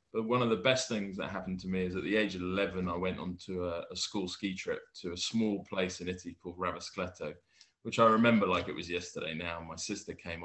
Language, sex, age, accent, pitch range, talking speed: English, male, 20-39, British, 90-110 Hz, 245 wpm